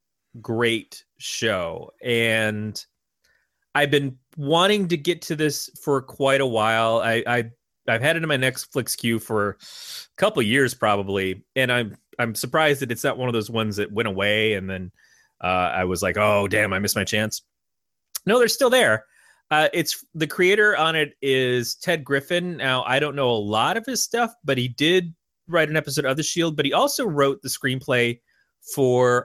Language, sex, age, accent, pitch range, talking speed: English, male, 30-49, American, 110-155 Hz, 190 wpm